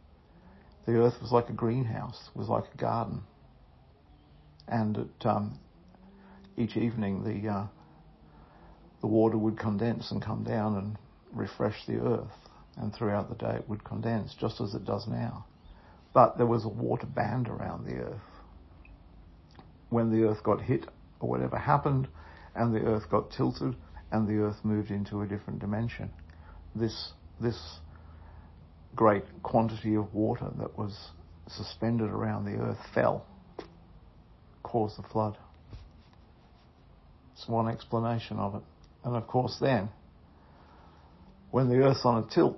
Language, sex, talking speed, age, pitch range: English, male, 140 wpm, 60-79, 85-115 Hz